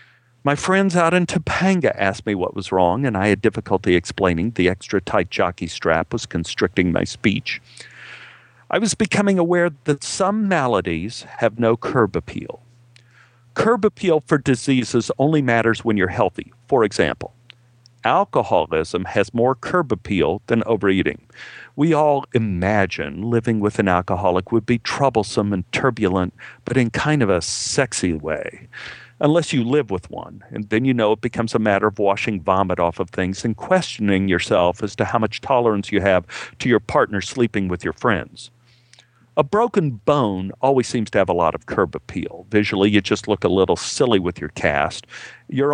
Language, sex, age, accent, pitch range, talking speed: English, male, 50-69, American, 100-135 Hz, 170 wpm